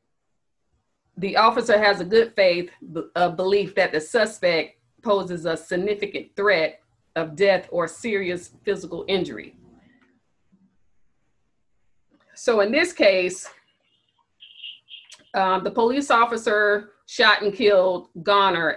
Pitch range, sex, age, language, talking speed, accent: 175-215 Hz, female, 40-59, English, 105 wpm, American